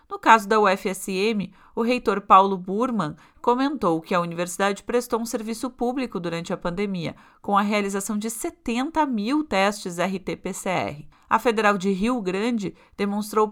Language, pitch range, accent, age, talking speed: Portuguese, 185-230 Hz, Brazilian, 40-59, 145 wpm